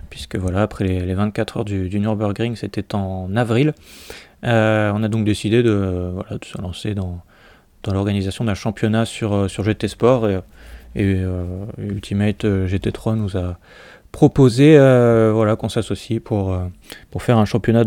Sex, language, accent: male, French, French